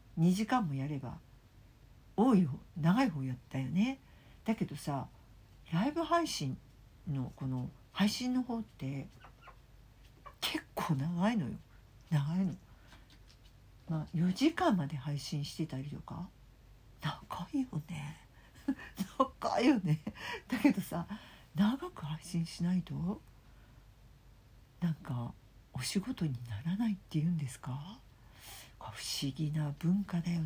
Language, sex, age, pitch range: Japanese, female, 50-69, 130-190 Hz